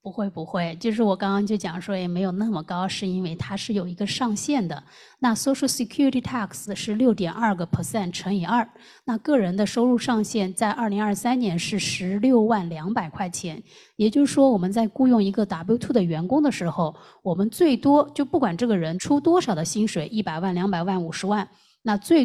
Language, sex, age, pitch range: Chinese, female, 20-39, 175-225 Hz